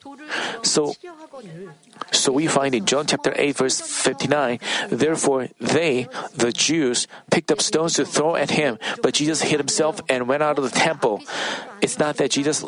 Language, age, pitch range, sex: Korean, 40-59, 140-175 Hz, male